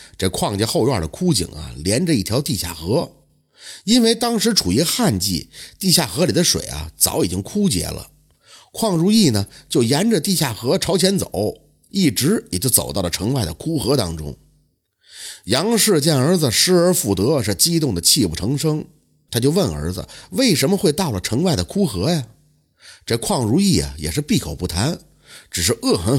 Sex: male